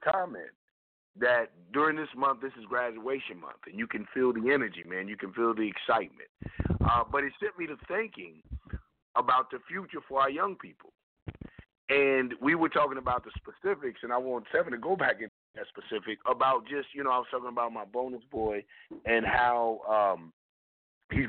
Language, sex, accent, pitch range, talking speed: English, male, American, 110-130 Hz, 190 wpm